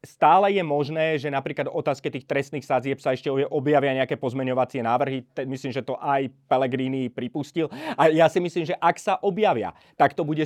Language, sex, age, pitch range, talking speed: Slovak, male, 30-49, 140-180 Hz, 190 wpm